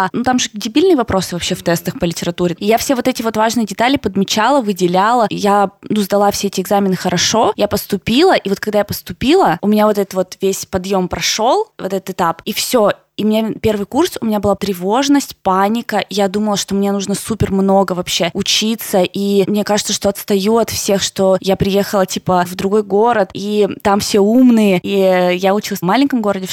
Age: 20-39